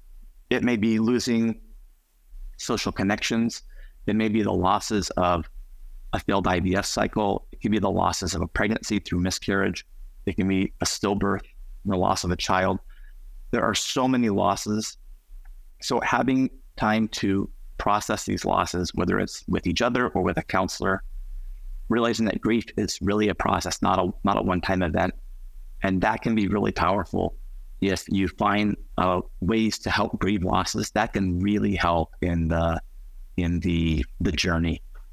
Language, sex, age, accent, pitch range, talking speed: English, male, 30-49, American, 80-105 Hz, 160 wpm